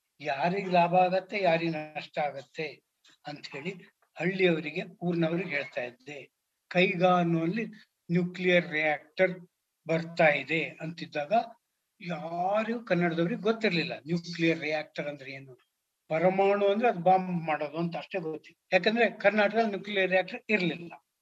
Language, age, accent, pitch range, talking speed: English, 60-79, Indian, 160-195 Hz, 40 wpm